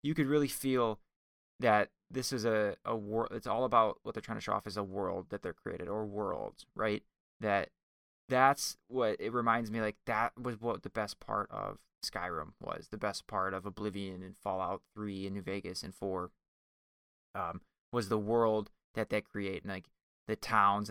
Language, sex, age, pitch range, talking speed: English, male, 20-39, 95-110 Hz, 195 wpm